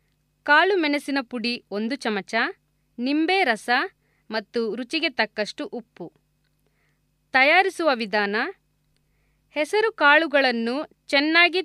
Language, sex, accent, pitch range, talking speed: Kannada, female, native, 235-310 Hz, 80 wpm